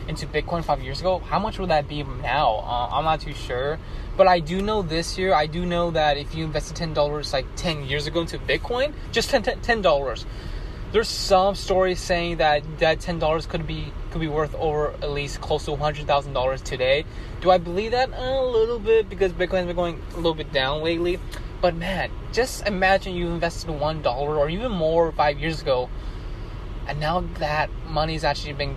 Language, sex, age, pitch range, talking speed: English, male, 20-39, 145-185 Hz, 210 wpm